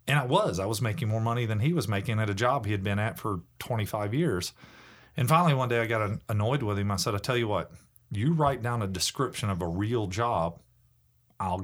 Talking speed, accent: 240 wpm, American